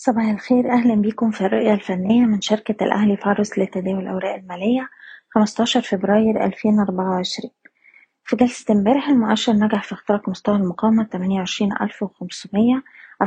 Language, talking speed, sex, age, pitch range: Arabic, 125 wpm, female, 20-39, 200-235 Hz